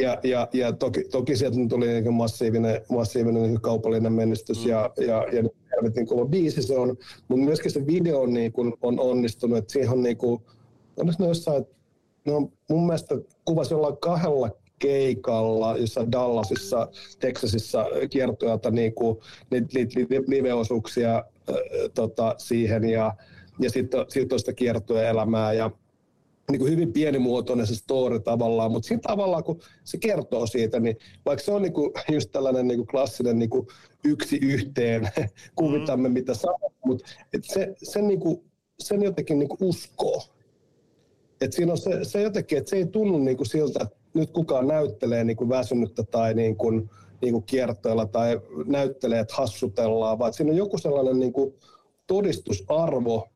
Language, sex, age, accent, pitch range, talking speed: Finnish, male, 50-69, native, 115-150 Hz, 145 wpm